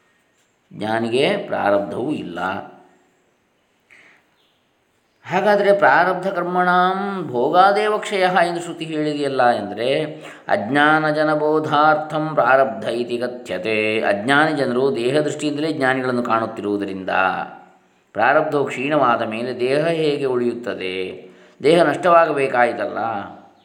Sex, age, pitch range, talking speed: male, 20-39, 110-150 Hz, 70 wpm